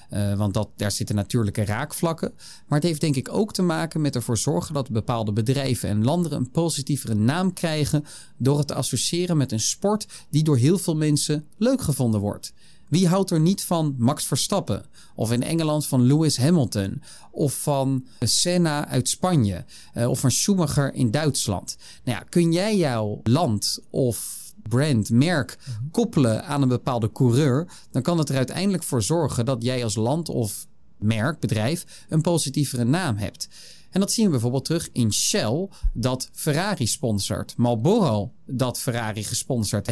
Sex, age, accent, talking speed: male, 40-59, Dutch, 170 wpm